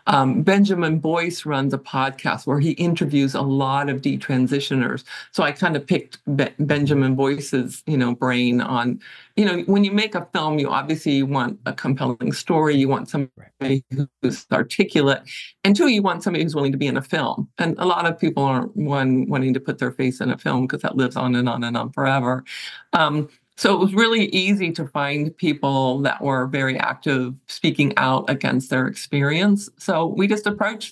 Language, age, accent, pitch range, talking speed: English, 50-69, American, 135-165 Hz, 195 wpm